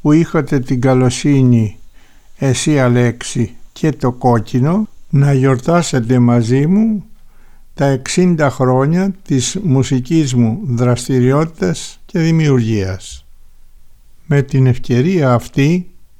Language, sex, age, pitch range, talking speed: Greek, male, 60-79, 120-155 Hz, 95 wpm